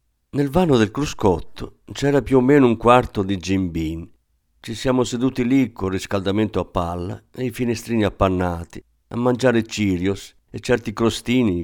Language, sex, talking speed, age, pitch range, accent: Italian, male, 150 wpm, 50-69, 85-125 Hz, native